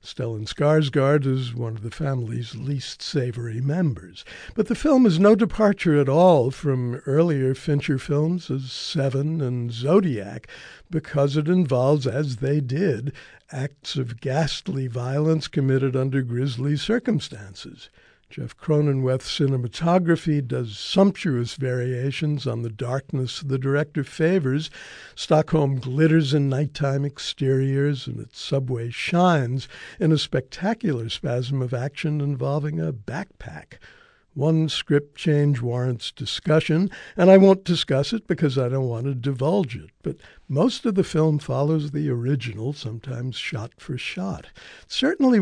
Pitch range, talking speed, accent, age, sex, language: 130-160 Hz, 130 wpm, American, 60-79, male, English